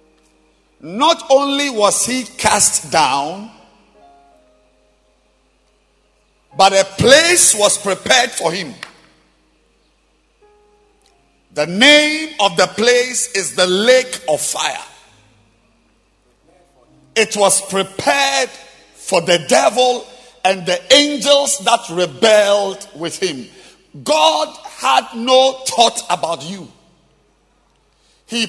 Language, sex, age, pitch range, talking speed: English, male, 50-69, 195-280 Hz, 90 wpm